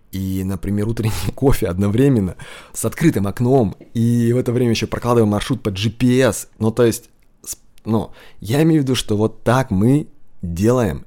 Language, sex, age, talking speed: Russian, male, 20-39, 165 wpm